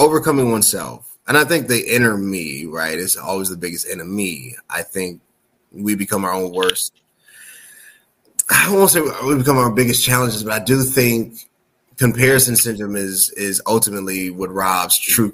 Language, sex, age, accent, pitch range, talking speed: English, male, 20-39, American, 95-115 Hz, 160 wpm